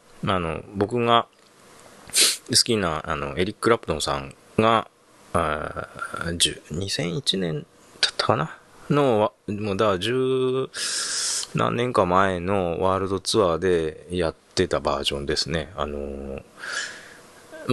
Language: Japanese